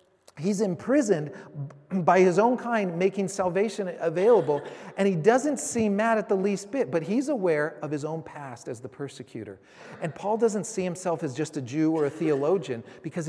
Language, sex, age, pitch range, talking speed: English, male, 40-59, 150-205 Hz, 185 wpm